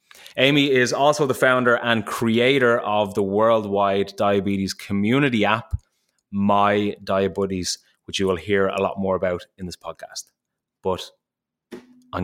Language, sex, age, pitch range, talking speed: English, male, 20-39, 100-120 Hz, 135 wpm